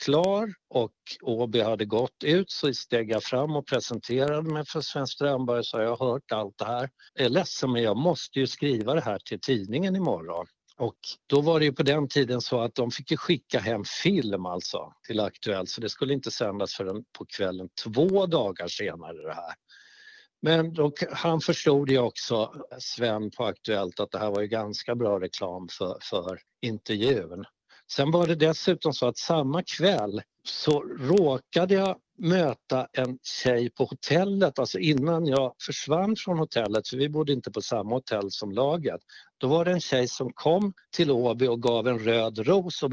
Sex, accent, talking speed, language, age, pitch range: male, Swedish, 185 wpm, English, 60-79, 115-160 Hz